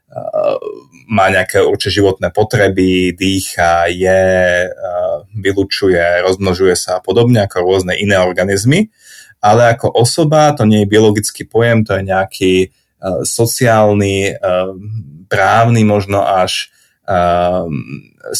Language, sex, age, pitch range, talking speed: Slovak, male, 30-49, 95-120 Hz, 115 wpm